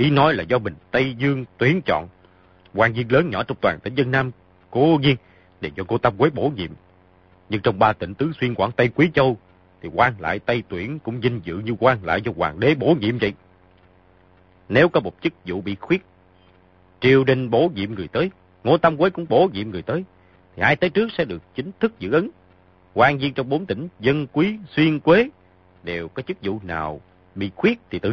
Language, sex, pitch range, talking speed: Vietnamese, male, 90-135 Hz, 220 wpm